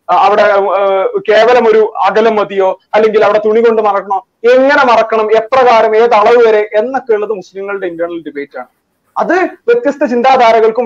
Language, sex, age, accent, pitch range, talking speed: Malayalam, male, 30-49, native, 175-245 Hz, 135 wpm